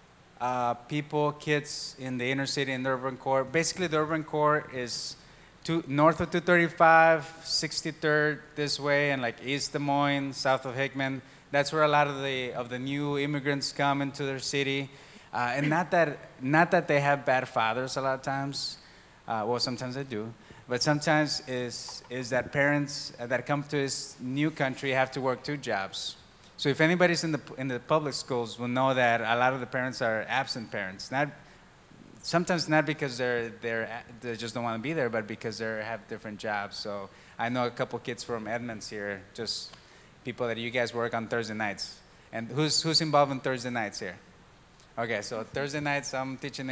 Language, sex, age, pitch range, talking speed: English, male, 20-39, 120-145 Hz, 195 wpm